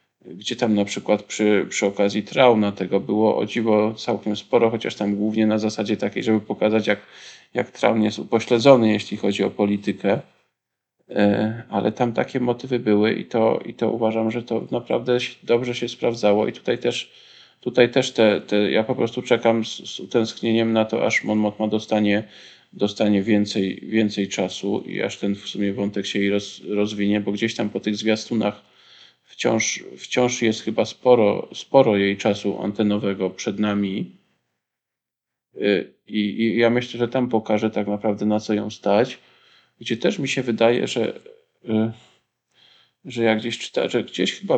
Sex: male